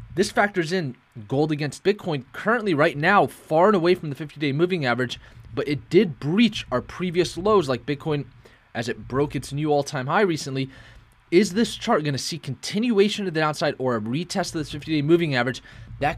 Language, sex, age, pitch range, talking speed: English, male, 20-39, 115-150 Hz, 210 wpm